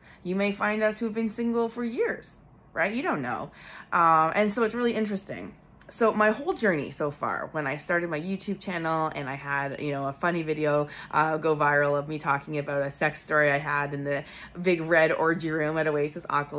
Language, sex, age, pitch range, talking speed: English, female, 20-39, 145-170 Hz, 215 wpm